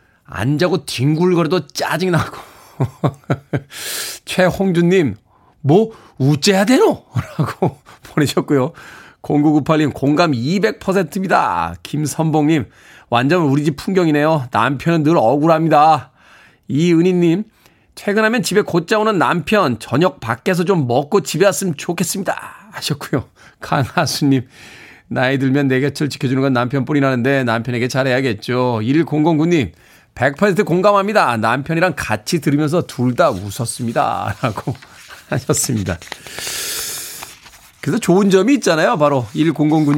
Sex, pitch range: male, 135-195 Hz